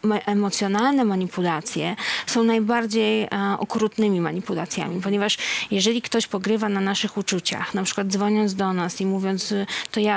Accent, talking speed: native, 135 wpm